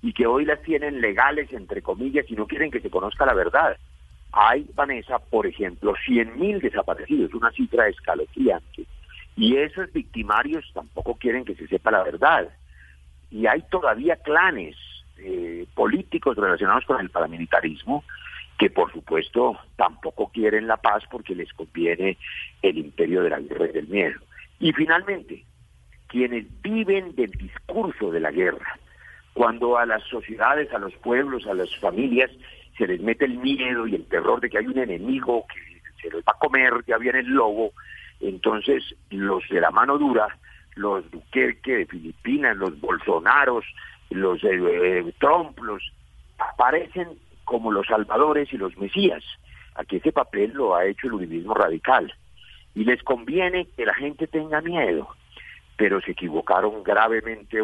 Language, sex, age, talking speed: Spanish, male, 50-69, 155 wpm